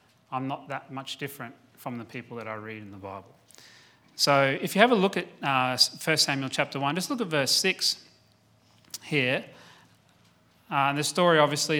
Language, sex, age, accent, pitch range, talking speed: English, male, 30-49, Australian, 125-150 Hz, 185 wpm